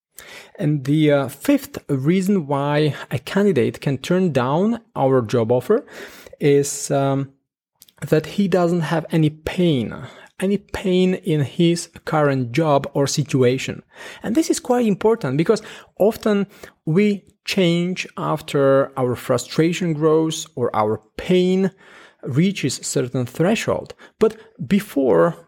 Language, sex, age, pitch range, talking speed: English, male, 30-49, 140-190 Hz, 120 wpm